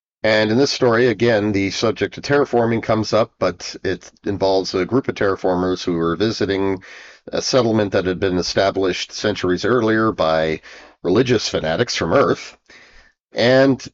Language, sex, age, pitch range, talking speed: English, male, 40-59, 95-125 Hz, 150 wpm